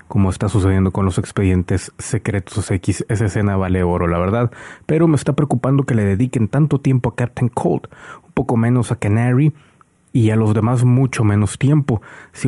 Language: Spanish